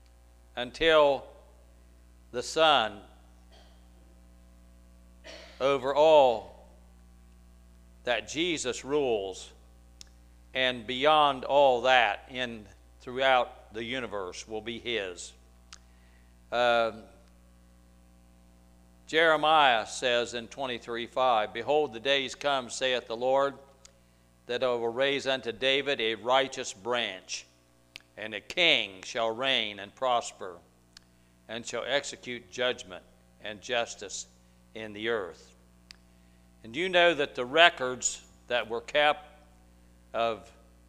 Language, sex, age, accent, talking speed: English, male, 60-79, American, 100 wpm